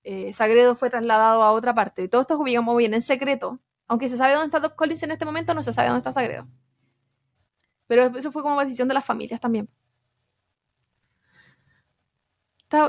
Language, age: Spanish, 20-39